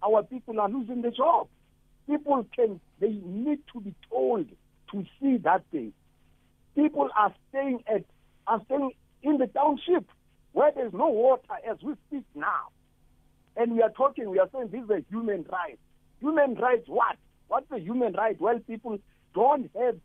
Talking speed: 170 wpm